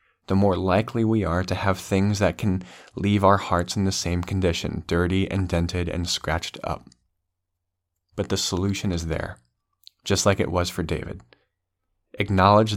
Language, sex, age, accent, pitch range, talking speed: English, male, 20-39, American, 90-100 Hz, 165 wpm